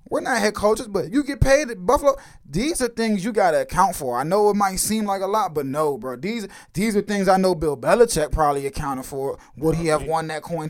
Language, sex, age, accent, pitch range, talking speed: English, male, 20-39, American, 145-205 Hz, 260 wpm